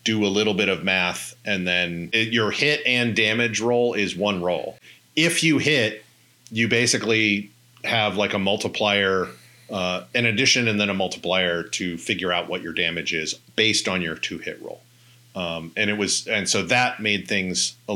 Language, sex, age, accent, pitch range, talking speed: English, male, 40-59, American, 95-120 Hz, 185 wpm